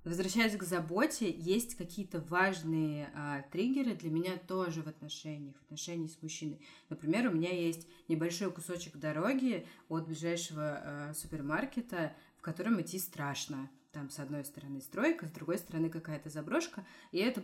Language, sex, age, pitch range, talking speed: Russian, female, 30-49, 155-205 Hz, 145 wpm